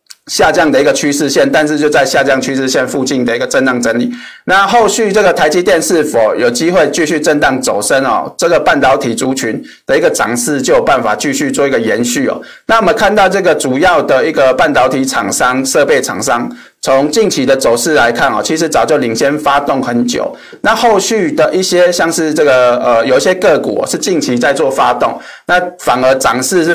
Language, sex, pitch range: Chinese, male, 135-195 Hz